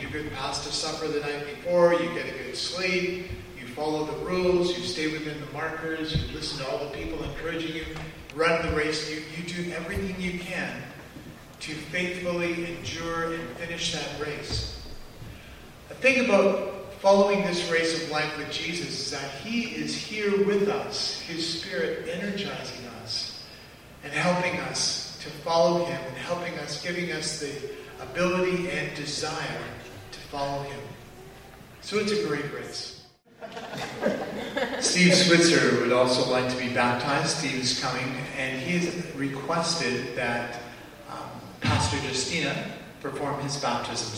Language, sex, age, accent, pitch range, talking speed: English, male, 40-59, American, 130-175 Hz, 145 wpm